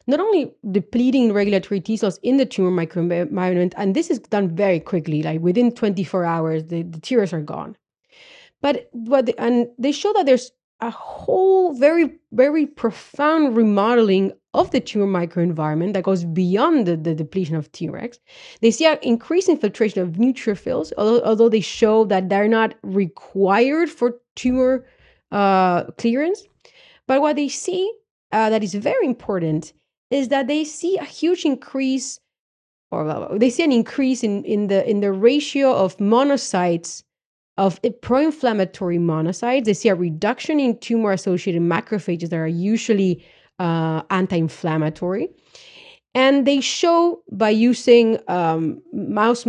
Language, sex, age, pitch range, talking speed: English, female, 30-49, 185-265 Hz, 145 wpm